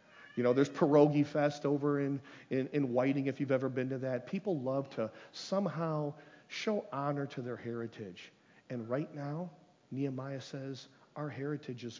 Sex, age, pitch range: male, 40-59, 125-170 Hz